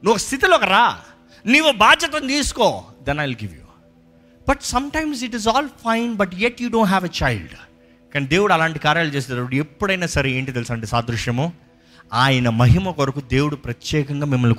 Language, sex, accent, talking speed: Telugu, male, native, 150 wpm